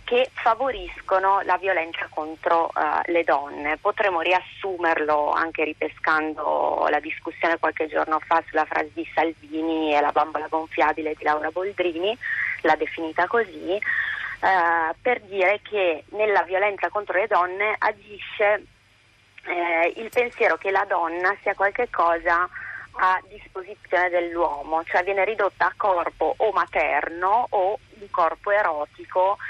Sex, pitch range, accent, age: female, 155-190 Hz, native, 30-49